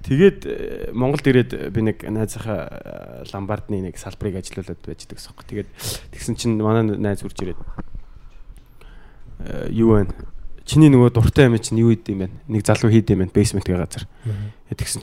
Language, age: Korean, 20-39